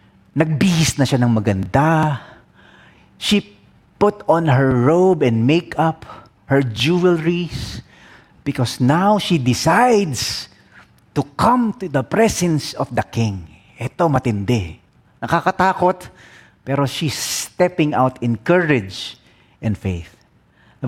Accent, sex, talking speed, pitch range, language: Filipino, male, 110 wpm, 125-180 Hz, English